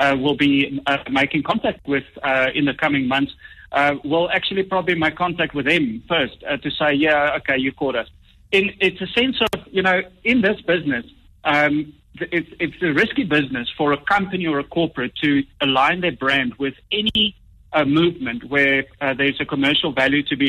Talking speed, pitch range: 195 wpm, 140-170 Hz